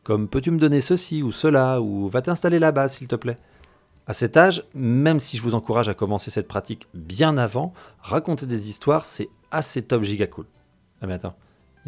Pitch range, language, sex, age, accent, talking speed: 105-150 Hz, French, male, 40-59, French, 220 wpm